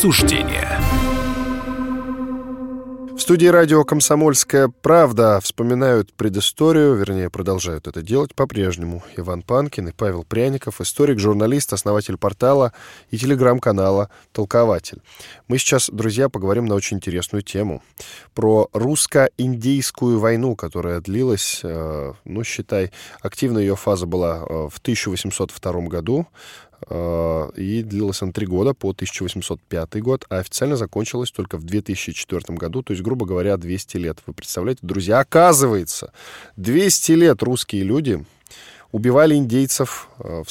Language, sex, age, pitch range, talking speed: Russian, male, 10-29, 95-130 Hz, 115 wpm